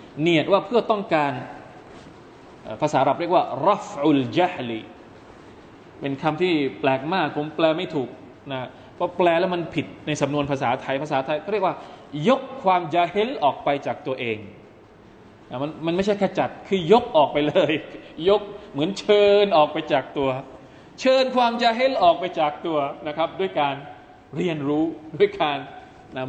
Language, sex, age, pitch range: Thai, male, 20-39, 130-180 Hz